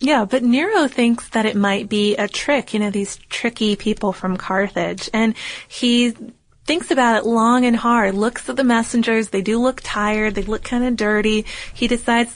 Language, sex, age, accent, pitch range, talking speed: English, female, 30-49, American, 200-235 Hz, 195 wpm